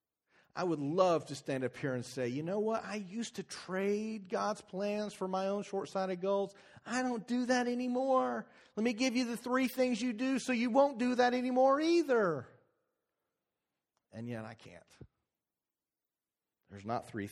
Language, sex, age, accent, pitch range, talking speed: English, male, 40-59, American, 110-175 Hz, 175 wpm